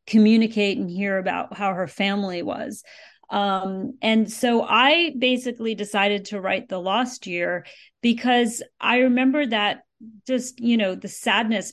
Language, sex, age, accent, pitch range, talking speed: English, female, 40-59, American, 195-245 Hz, 145 wpm